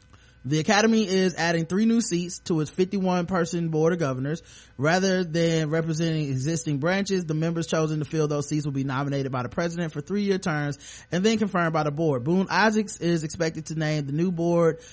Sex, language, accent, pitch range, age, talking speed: male, English, American, 140-175 Hz, 20-39, 195 wpm